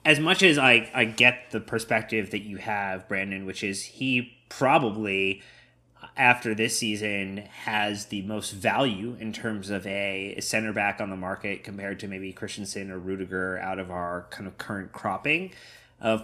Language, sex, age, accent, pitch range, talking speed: English, male, 30-49, American, 100-120 Hz, 170 wpm